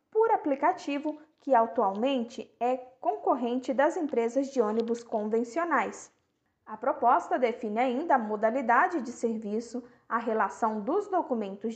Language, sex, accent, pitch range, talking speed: Portuguese, female, Brazilian, 225-280 Hz, 115 wpm